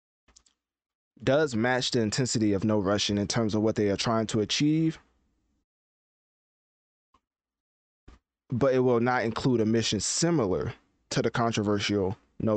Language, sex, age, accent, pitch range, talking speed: English, male, 20-39, American, 105-130 Hz, 135 wpm